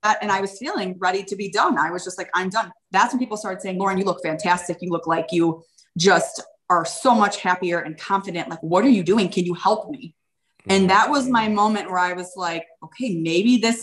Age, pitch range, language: 20-39, 175-210 Hz, English